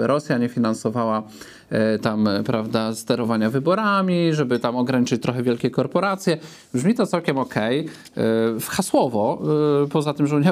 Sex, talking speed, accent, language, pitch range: male, 125 wpm, native, Polish, 125-160 Hz